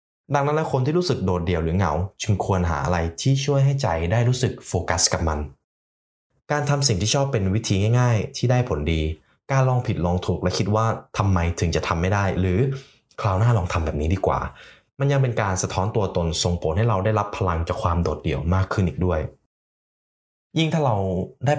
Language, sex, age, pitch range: Thai, male, 20-39, 85-120 Hz